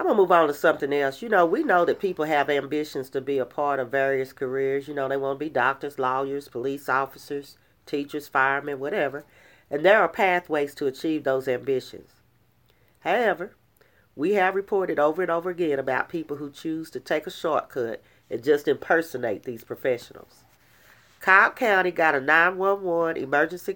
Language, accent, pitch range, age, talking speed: English, American, 140-200 Hz, 40-59, 180 wpm